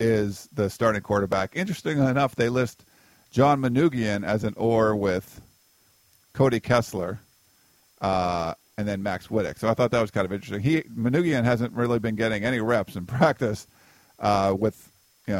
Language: English